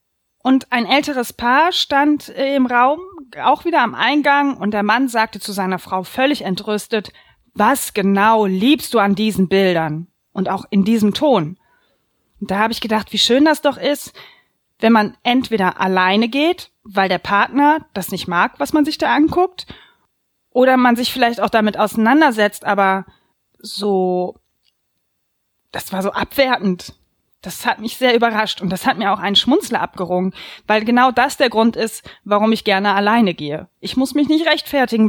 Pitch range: 195-255 Hz